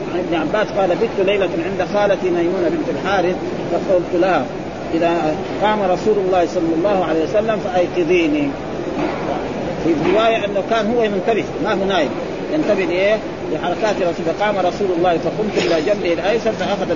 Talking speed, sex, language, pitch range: 145 wpm, male, Arabic, 180-220 Hz